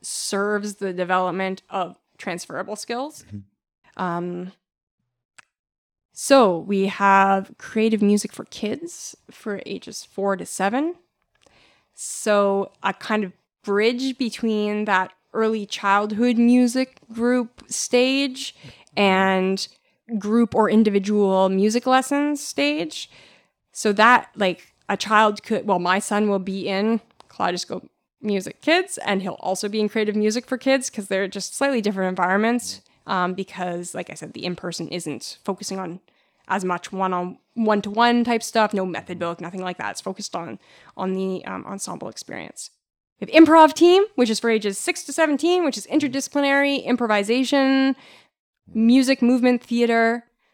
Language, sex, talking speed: English, female, 140 wpm